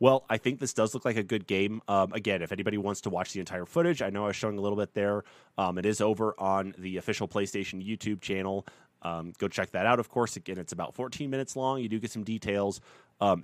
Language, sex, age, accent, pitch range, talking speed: English, male, 30-49, American, 95-125 Hz, 260 wpm